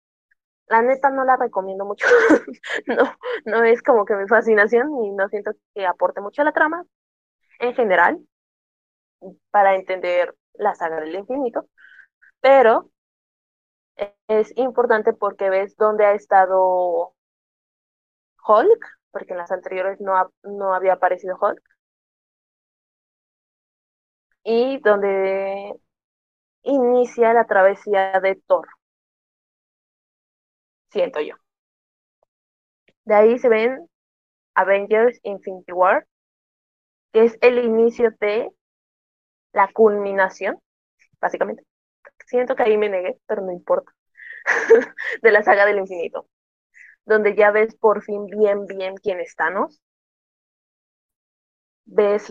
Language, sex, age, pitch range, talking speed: Spanish, female, 20-39, 190-235 Hz, 110 wpm